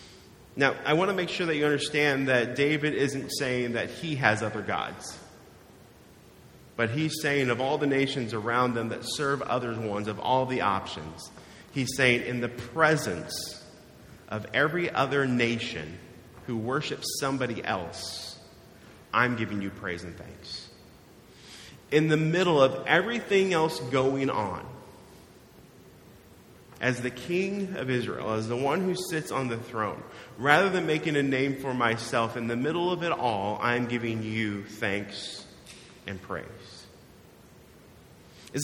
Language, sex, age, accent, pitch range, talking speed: English, male, 30-49, American, 115-145 Hz, 150 wpm